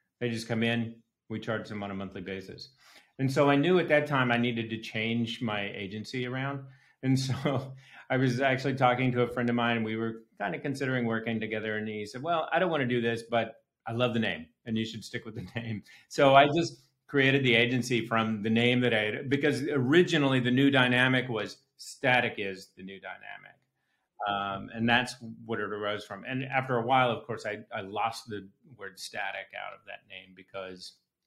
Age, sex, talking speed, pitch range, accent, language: 40-59, male, 215 wpm, 100-130 Hz, American, English